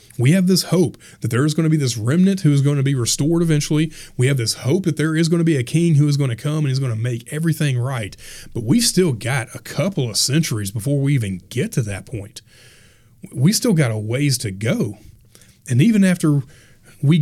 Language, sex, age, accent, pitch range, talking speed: English, male, 30-49, American, 115-155 Hz, 240 wpm